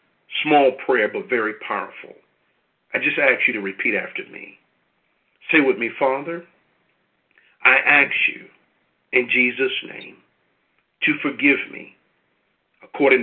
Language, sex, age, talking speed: English, male, 50-69, 120 wpm